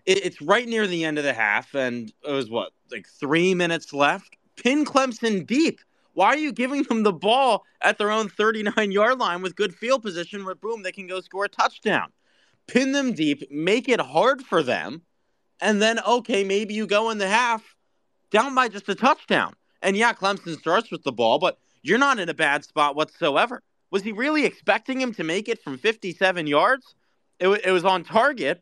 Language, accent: English, American